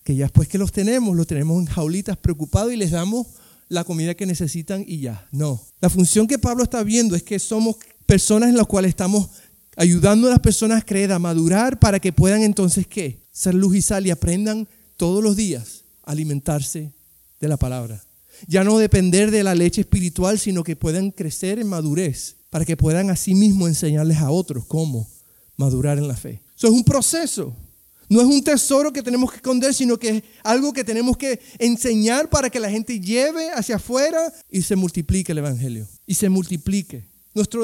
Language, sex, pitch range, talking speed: Spanish, male, 175-235 Hz, 195 wpm